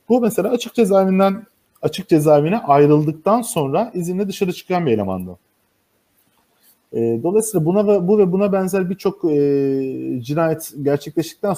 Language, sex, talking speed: Turkish, male, 115 wpm